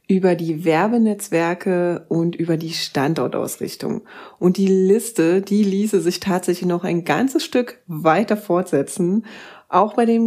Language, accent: German, German